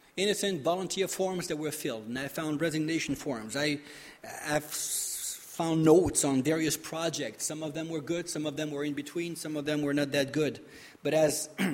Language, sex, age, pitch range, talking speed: English, male, 30-49, 140-165 Hz, 195 wpm